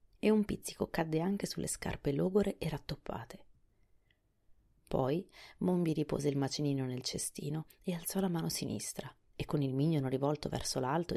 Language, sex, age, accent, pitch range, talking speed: Italian, female, 30-49, native, 140-190 Hz, 155 wpm